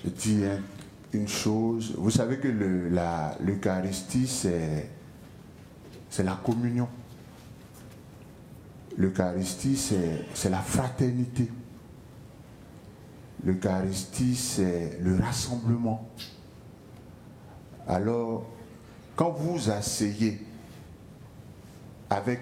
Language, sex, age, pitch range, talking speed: English, male, 60-79, 95-115 Hz, 65 wpm